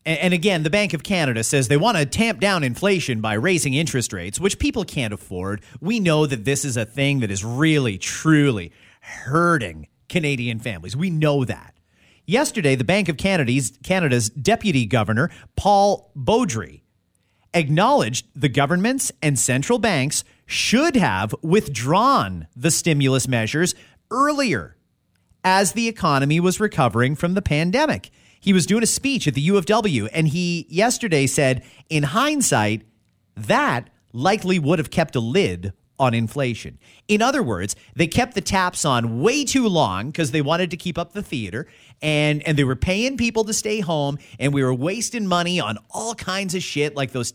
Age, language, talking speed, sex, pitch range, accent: 40-59, English, 170 wpm, male, 130-190 Hz, American